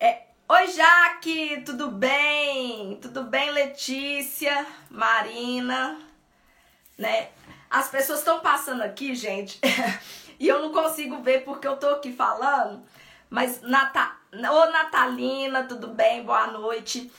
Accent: Brazilian